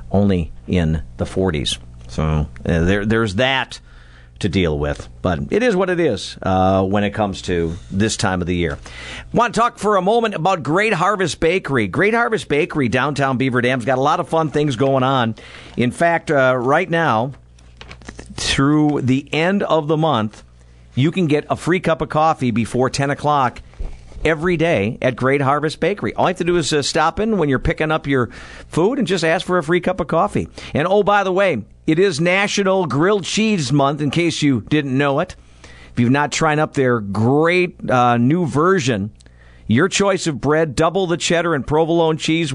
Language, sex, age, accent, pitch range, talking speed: English, male, 50-69, American, 110-165 Hz, 205 wpm